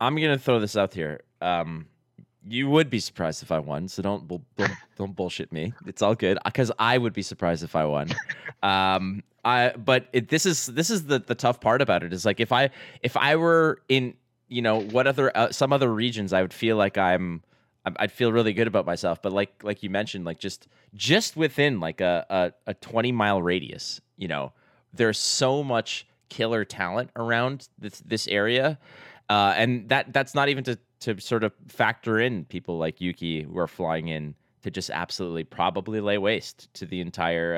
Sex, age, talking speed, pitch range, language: male, 20-39, 205 wpm, 95-125 Hz, English